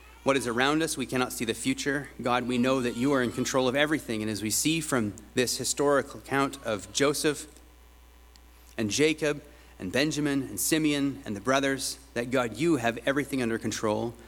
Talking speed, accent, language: 190 wpm, American, English